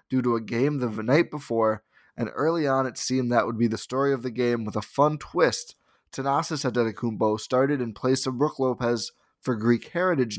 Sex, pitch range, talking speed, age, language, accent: male, 115-145 Hz, 200 wpm, 20-39, English, American